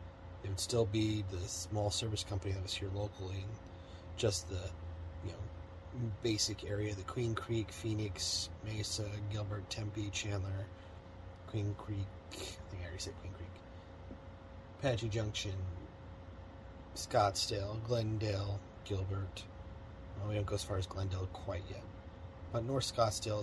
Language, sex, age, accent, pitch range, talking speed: English, male, 30-49, American, 90-105 Hz, 135 wpm